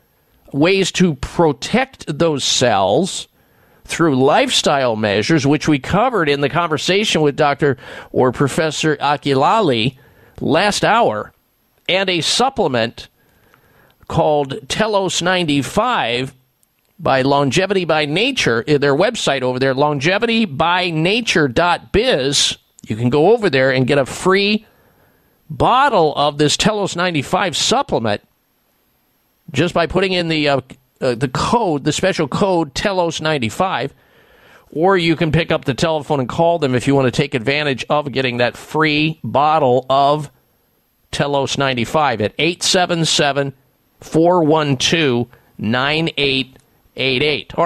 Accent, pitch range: American, 135-175 Hz